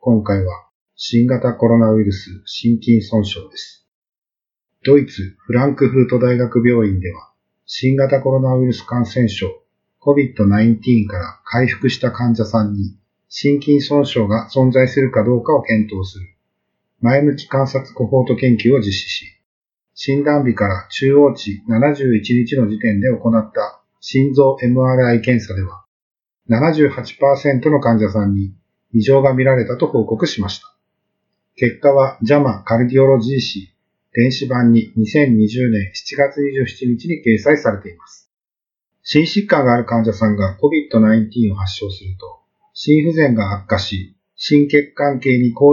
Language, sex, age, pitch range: Japanese, male, 40-59, 110-135 Hz